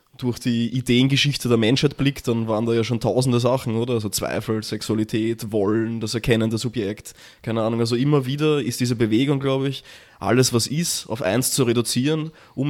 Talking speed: 190 wpm